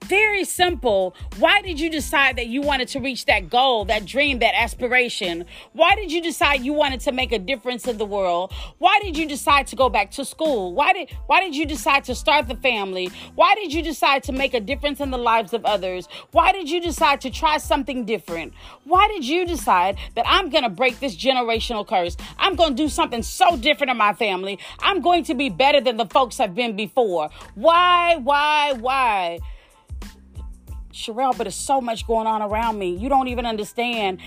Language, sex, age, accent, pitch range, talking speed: English, female, 40-59, American, 230-320 Hz, 205 wpm